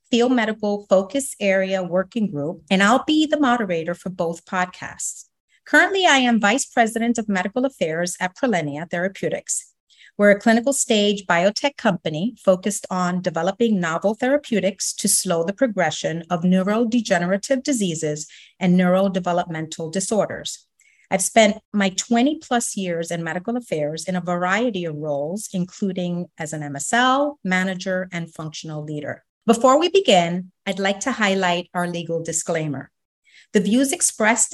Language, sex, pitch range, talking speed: English, female, 175-235 Hz, 140 wpm